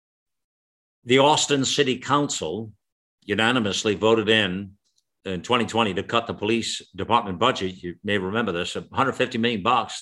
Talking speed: 130 wpm